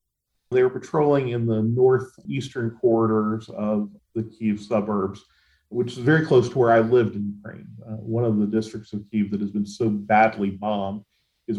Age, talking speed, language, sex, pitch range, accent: 40-59, 180 wpm, English, male, 105-135 Hz, American